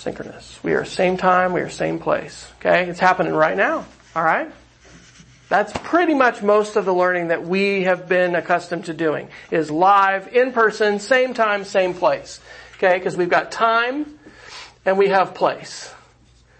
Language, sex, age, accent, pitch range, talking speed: English, male, 40-59, American, 170-240 Hz, 170 wpm